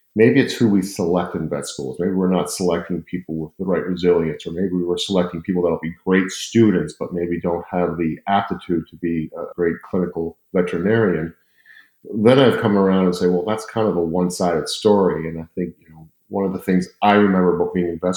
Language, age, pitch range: English, 50-69, 90-100 Hz